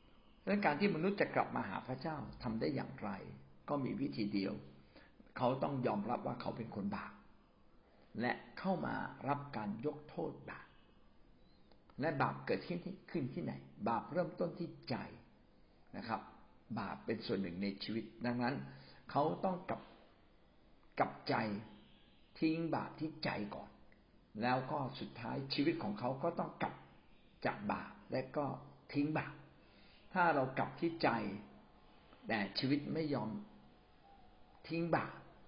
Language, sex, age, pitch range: Thai, male, 60-79, 100-160 Hz